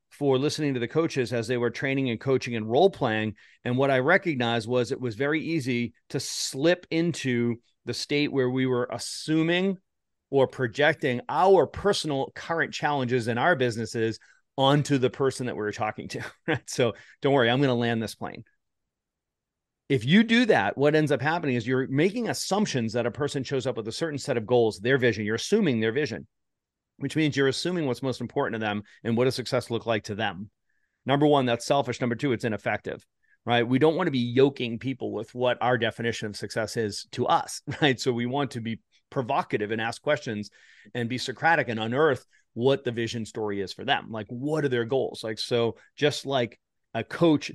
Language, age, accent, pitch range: English, 40-59, American, 115-145 Hz